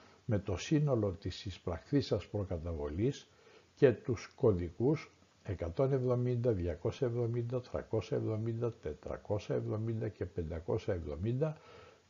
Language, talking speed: Greek, 75 wpm